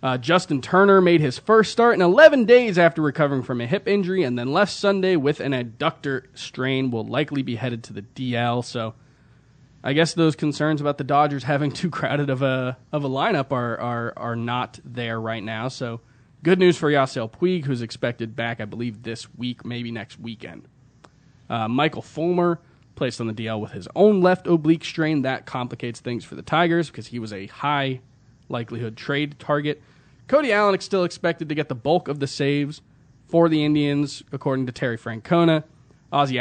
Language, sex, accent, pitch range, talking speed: English, male, American, 120-155 Hz, 195 wpm